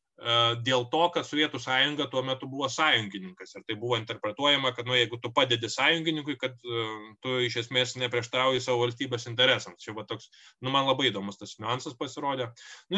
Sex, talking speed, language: male, 180 wpm, English